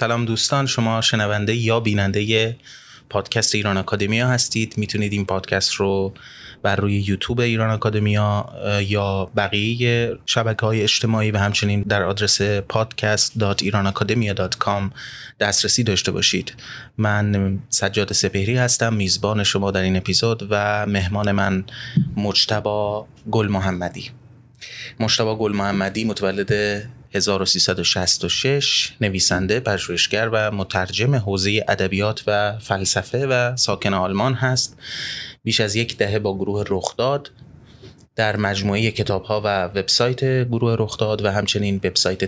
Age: 30-49